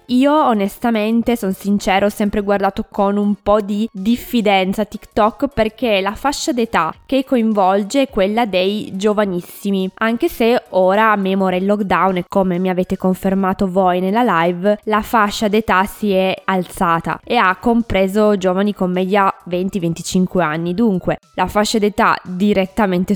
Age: 20-39